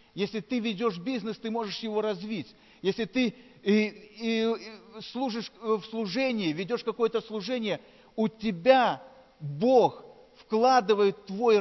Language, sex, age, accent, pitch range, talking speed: Russian, male, 40-59, native, 190-240 Hz, 110 wpm